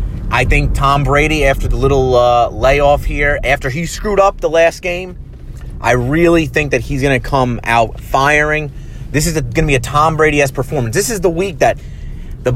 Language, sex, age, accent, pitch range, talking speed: English, male, 30-49, American, 115-145 Hz, 200 wpm